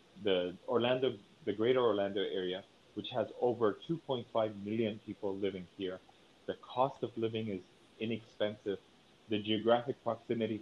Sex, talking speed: male, 130 wpm